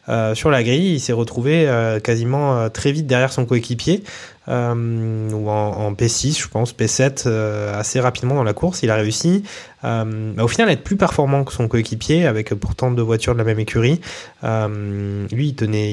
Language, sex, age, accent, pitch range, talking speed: French, male, 20-39, French, 110-135 Hz, 200 wpm